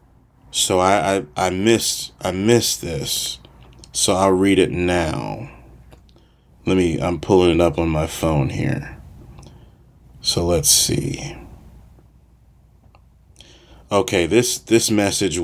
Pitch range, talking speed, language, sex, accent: 90-115 Hz, 115 wpm, English, male, American